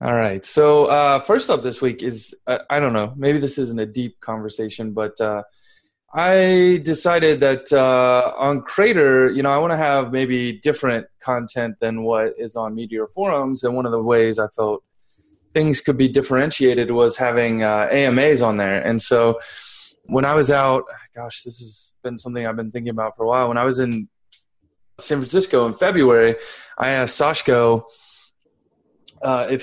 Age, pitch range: 20-39, 110-145 Hz